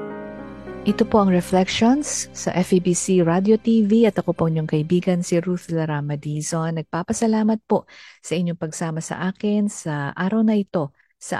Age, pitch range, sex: 50-69, 155-205 Hz, female